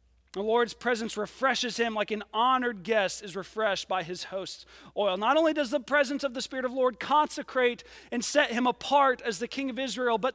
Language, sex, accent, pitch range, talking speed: English, male, American, 220-280 Hz, 215 wpm